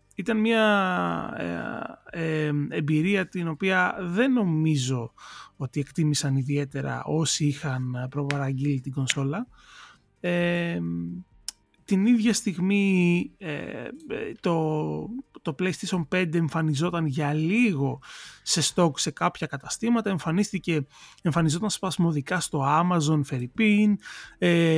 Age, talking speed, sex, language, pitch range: 30-49, 85 wpm, male, Greek, 145-195 Hz